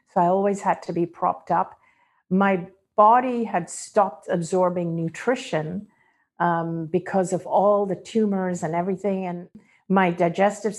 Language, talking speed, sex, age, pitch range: English, 140 wpm, female, 50-69, 165-200 Hz